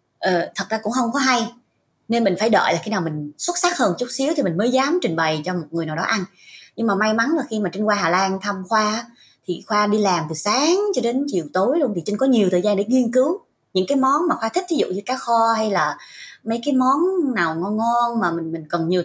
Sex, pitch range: female, 185-255 Hz